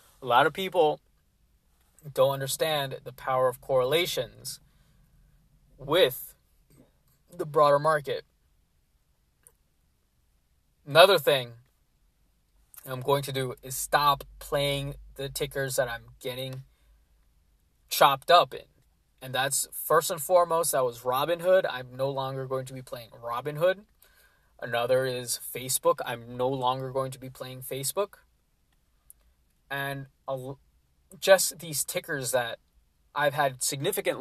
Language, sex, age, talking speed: English, male, 20-39, 120 wpm